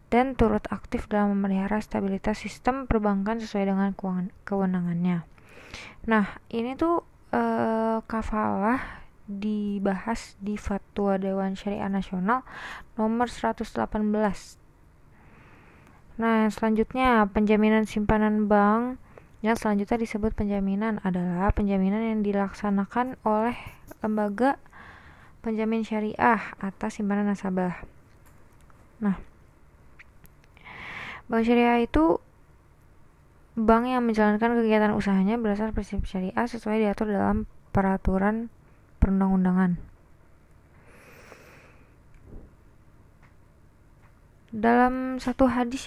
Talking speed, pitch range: 85 wpm, 195-225 Hz